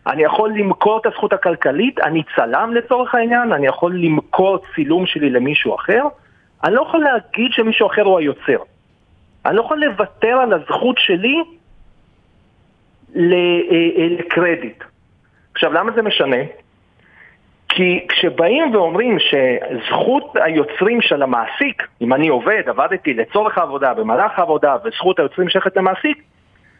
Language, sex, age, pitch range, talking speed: Hebrew, male, 40-59, 170-245 Hz, 125 wpm